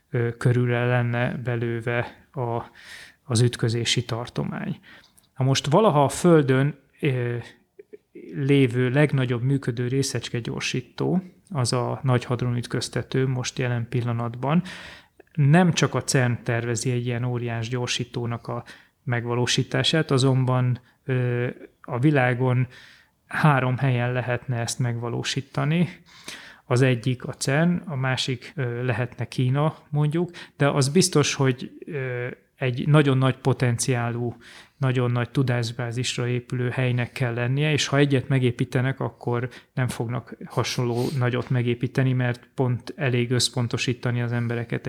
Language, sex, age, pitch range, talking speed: Hungarian, male, 30-49, 120-135 Hz, 110 wpm